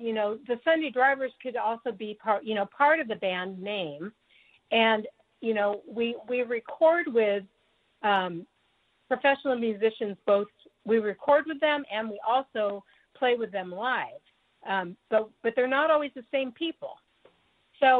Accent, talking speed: American, 160 wpm